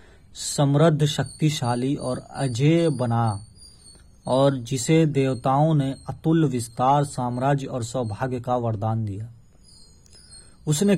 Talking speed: 100 wpm